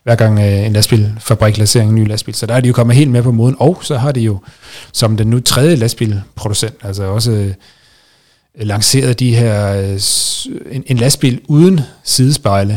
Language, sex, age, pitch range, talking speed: Danish, male, 30-49, 105-120 Hz, 195 wpm